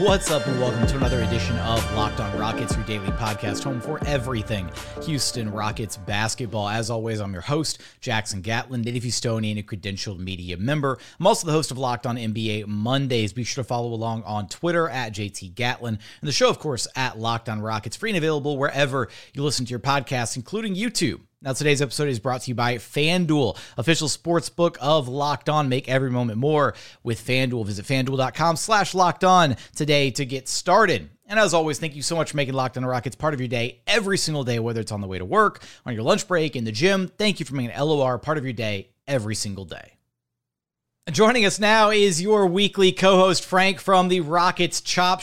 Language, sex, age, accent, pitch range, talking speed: English, male, 30-49, American, 115-175 Hz, 210 wpm